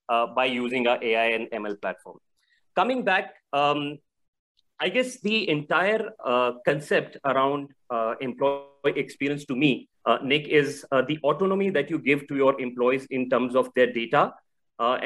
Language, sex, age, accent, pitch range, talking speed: English, male, 30-49, Indian, 125-150 Hz, 165 wpm